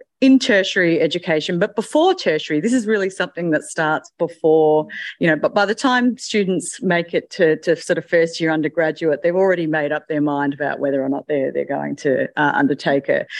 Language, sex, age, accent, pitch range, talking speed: English, female, 30-49, Australian, 155-180 Hz, 195 wpm